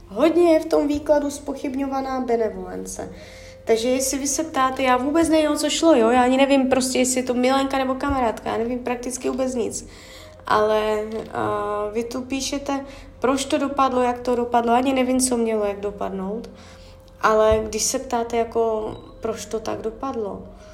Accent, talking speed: native, 170 wpm